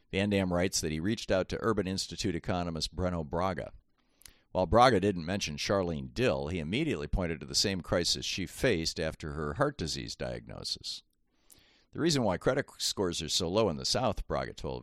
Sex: male